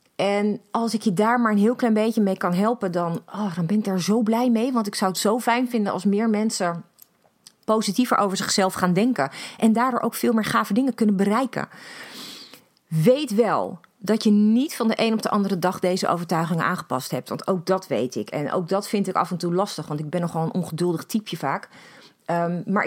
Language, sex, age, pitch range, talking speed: Dutch, female, 30-49, 180-225 Hz, 225 wpm